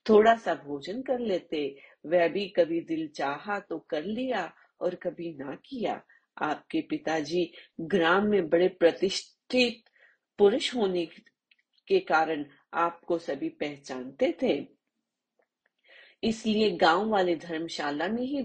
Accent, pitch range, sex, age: native, 160-205 Hz, female, 30-49